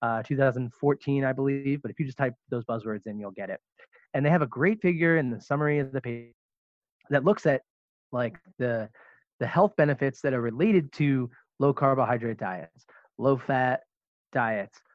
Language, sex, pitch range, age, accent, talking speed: Spanish, male, 115-145 Hz, 20-39, American, 175 wpm